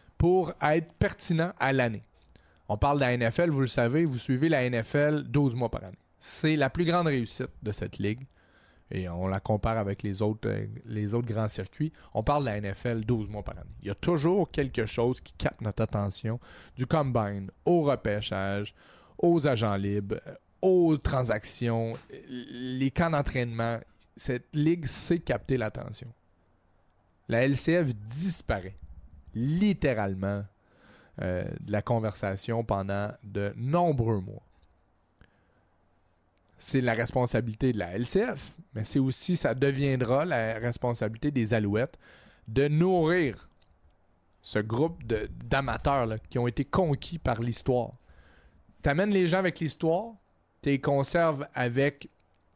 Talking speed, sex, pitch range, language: 140 wpm, male, 105-140 Hz, French